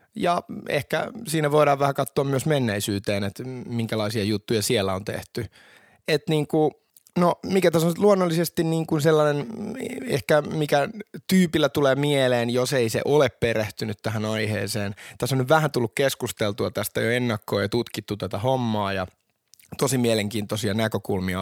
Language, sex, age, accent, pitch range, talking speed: Finnish, male, 20-39, native, 100-135 Hz, 150 wpm